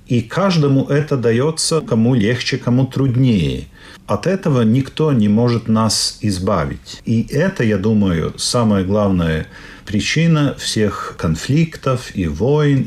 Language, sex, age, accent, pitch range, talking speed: Russian, male, 40-59, native, 100-145 Hz, 120 wpm